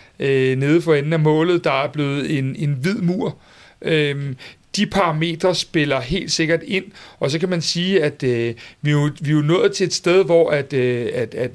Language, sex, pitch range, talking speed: Danish, male, 150-190 Hz, 195 wpm